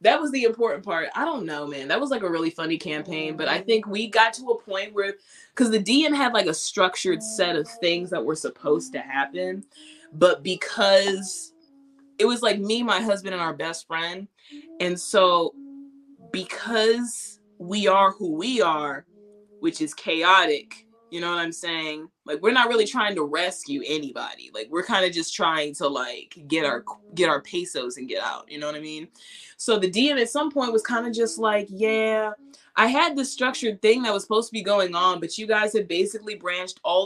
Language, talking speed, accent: English, 205 wpm, American